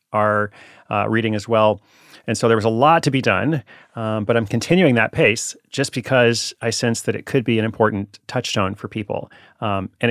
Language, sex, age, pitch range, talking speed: English, male, 30-49, 105-125 Hz, 200 wpm